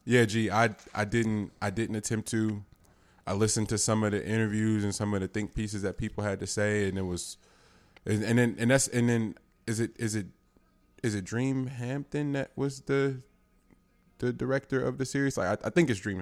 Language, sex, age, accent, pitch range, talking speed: English, male, 20-39, American, 95-115 Hz, 220 wpm